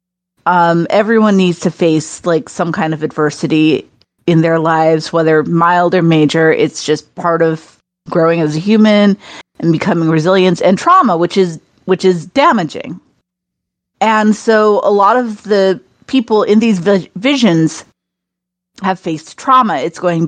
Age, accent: 30-49, American